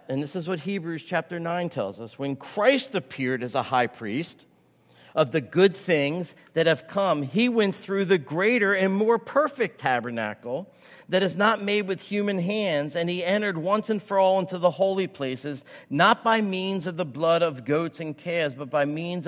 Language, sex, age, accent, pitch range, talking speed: English, male, 50-69, American, 140-195 Hz, 195 wpm